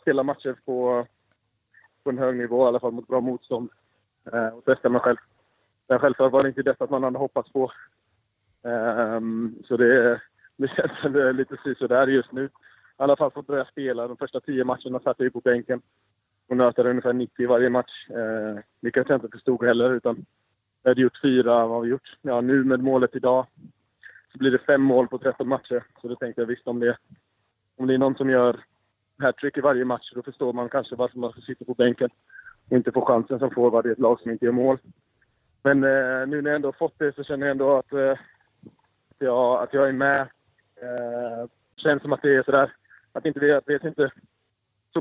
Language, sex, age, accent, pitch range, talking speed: Swedish, male, 20-39, Norwegian, 120-135 Hz, 215 wpm